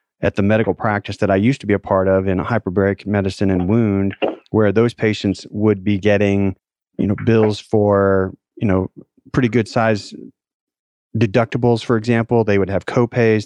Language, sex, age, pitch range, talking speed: English, male, 40-59, 95-110 Hz, 180 wpm